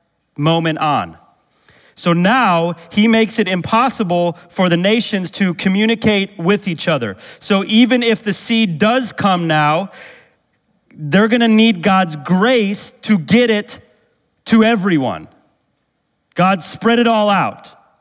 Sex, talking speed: male, 135 wpm